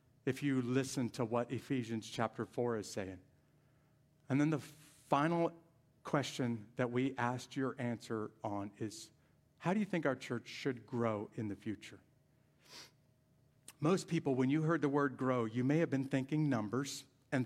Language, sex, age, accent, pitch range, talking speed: English, male, 50-69, American, 120-145 Hz, 165 wpm